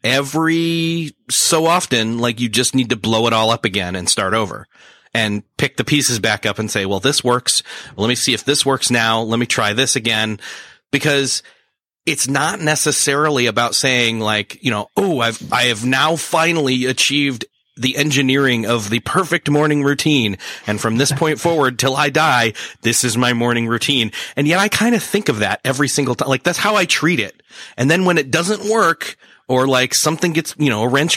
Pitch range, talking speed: 120-155 Hz, 205 wpm